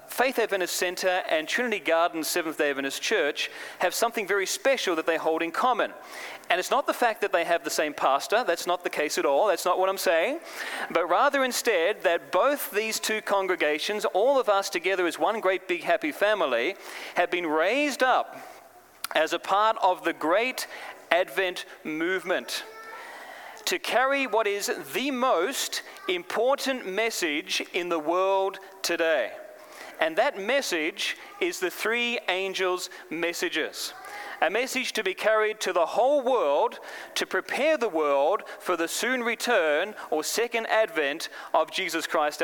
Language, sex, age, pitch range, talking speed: English, male, 40-59, 180-275 Hz, 160 wpm